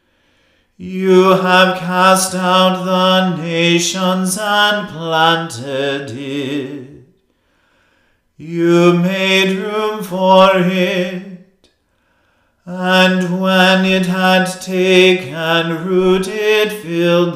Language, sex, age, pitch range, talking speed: English, male, 40-59, 170-190 Hz, 75 wpm